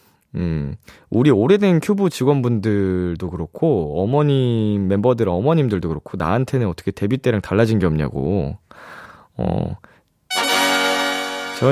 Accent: native